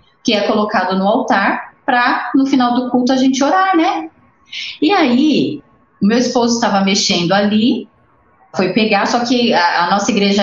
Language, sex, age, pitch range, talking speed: Portuguese, female, 20-39, 200-265 Hz, 165 wpm